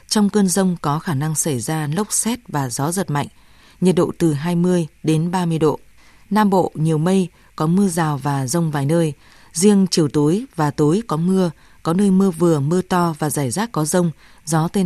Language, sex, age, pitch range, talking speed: Vietnamese, female, 20-39, 155-190 Hz, 210 wpm